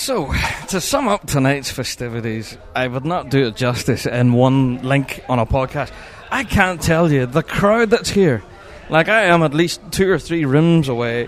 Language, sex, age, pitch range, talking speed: English, male, 20-39, 125-175 Hz, 190 wpm